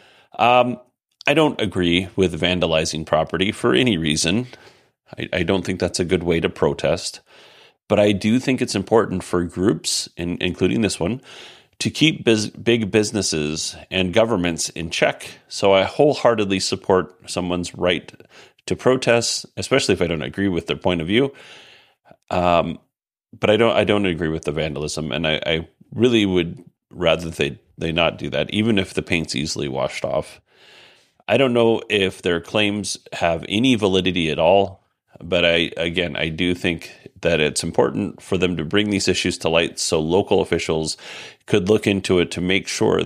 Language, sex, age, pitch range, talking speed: English, male, 40-59, 85-105 Hz, 170 wpm